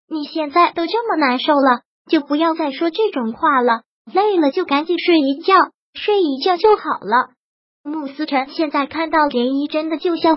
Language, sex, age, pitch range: Chinese, male, 20-39, 275-335 Hz